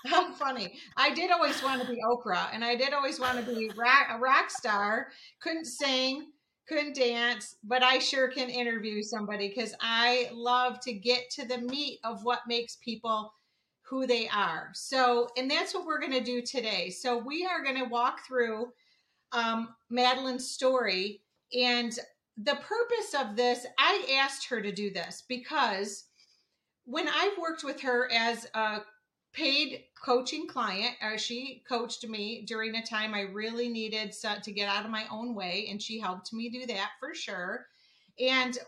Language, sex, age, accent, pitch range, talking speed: English, female, 40-59, American, 230-280 Hz, 170 wpm